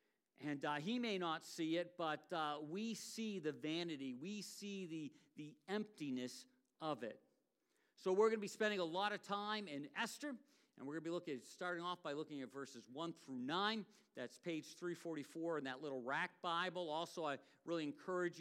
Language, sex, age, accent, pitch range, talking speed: English, male, 50-69, American, 150-205 Hz, 195 wpm